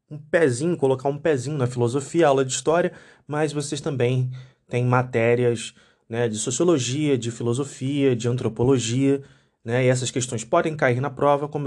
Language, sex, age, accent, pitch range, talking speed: Portuguese, male, 20-39, Brazilian, 120-150 Hz, 160 wpm